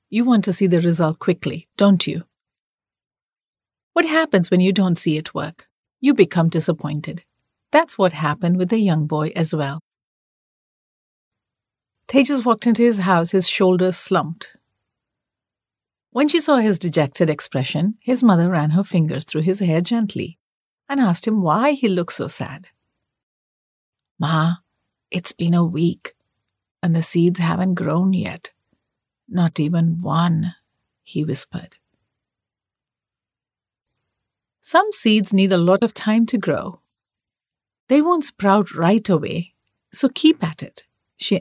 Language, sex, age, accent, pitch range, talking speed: English, female, 50-69, Indian, 155-215 Hz, 140 wpm